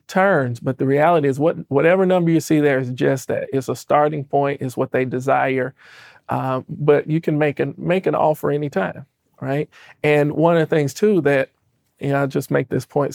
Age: 40-59